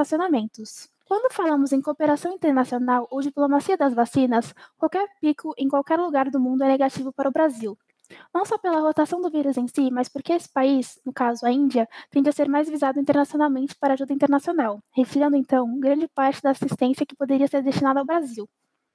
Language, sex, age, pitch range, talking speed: Portuguese, female, 10-29, 260-300 Hz, 185 wpm